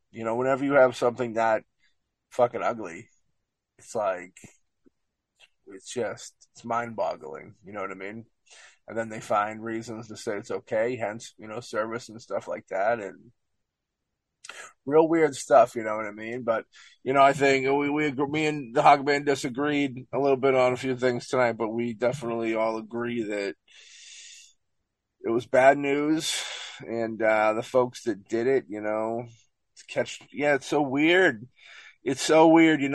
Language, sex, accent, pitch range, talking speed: English, male, American, 110-135 Hz, 170 wpm